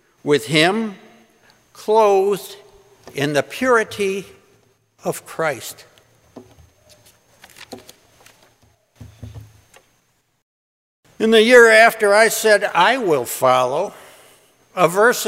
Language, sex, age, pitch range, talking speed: English, male, 60-79, 140-200 Hz, 75 wpm